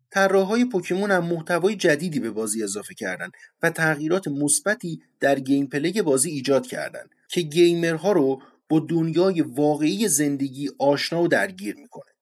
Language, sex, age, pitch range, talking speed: Persian, male, 30-49, 140-200 Hz, 135 wpm